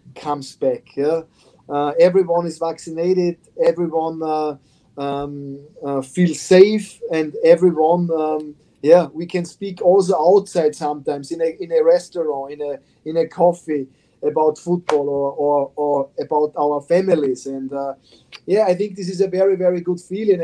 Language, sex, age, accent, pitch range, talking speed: English, male, 30-49, German, 150-185 Hz, 155 wpm